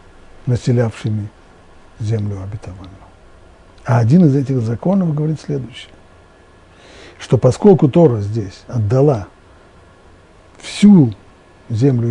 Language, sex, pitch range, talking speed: Russian, male, 95-140 Hz, 85 wpm